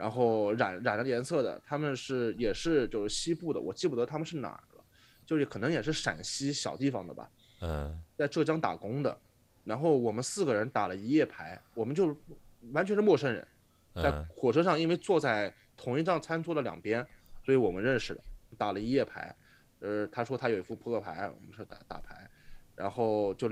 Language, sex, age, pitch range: Chinese, male, 20-39, 110-145 Hz